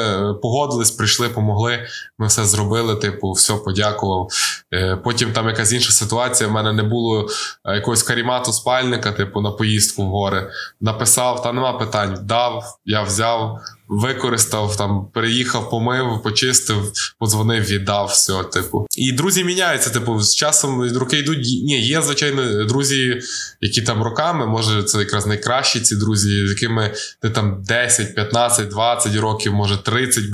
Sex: male